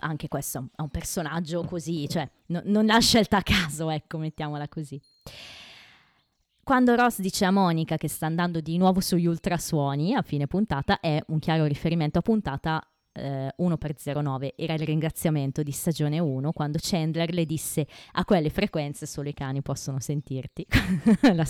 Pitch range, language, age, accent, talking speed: 150-195 Hz, Italian, 20-39, native, 160 wpm